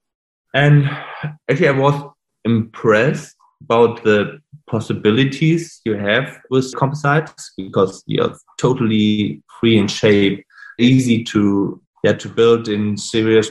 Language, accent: English, German